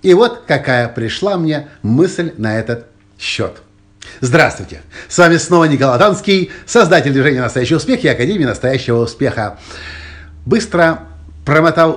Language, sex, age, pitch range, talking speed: Russian, male, 50-69, 105-150 Hz, 125 wpm